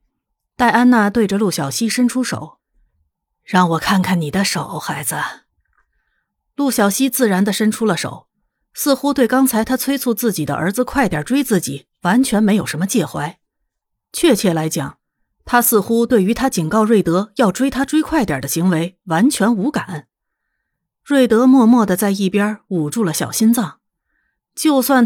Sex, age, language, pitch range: female, 30-49, Chinese, 180-260 Hz